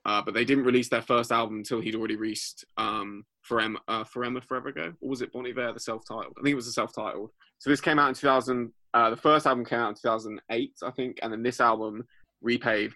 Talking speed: 245 wpm